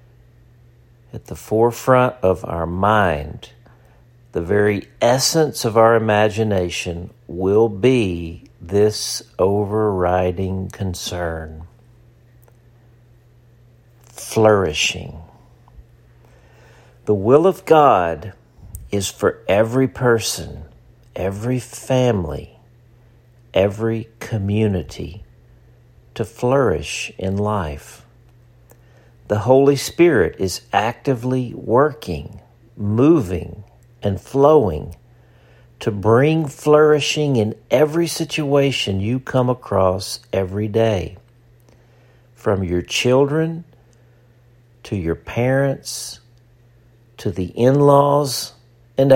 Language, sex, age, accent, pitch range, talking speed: English, male, 50-69, American, 100-120 Hz, 80 wpm